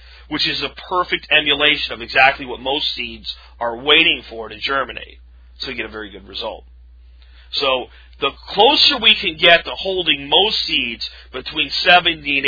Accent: American